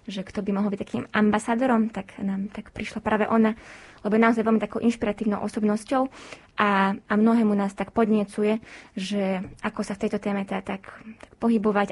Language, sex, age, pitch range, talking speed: Slovak, female, 20-39, 200-225 Hz, 175 wpm